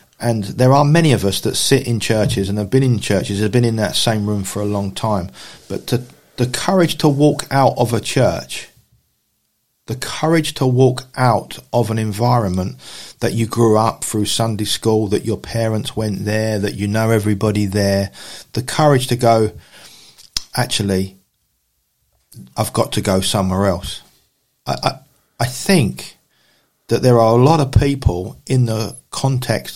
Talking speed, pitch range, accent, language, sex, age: 170 wpm, 105-130 Hz, British, English, male, 40-59